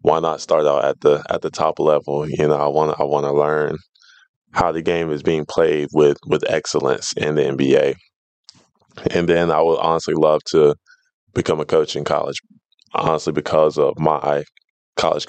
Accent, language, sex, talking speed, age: American, English, male, 185 wpm, 20-39